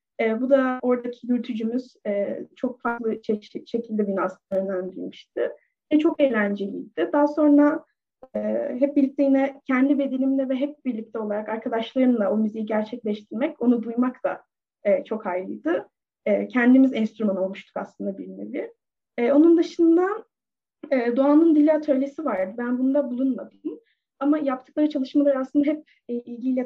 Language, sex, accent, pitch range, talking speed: Turkish, female, native, 230-290 Hz, 115 wpm